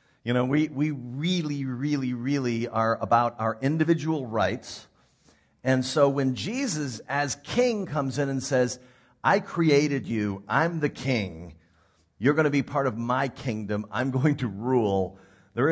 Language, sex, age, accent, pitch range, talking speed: English, male, 50-69, American, 115-145 Hz, 155 wpm